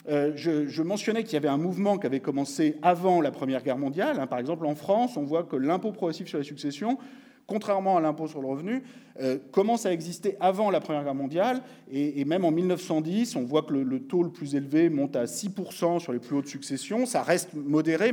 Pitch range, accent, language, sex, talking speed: 140-215 Hz, French, French, male, 210 wpm